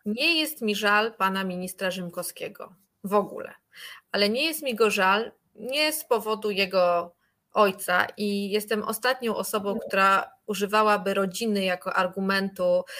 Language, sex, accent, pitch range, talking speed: Polish, female, native, 195-235 Hz, 135 wpm